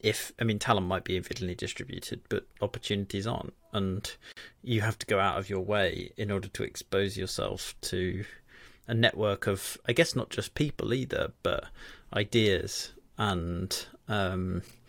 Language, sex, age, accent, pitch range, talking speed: English, male, 30-49, British, 95-115 Hz, 155 wpm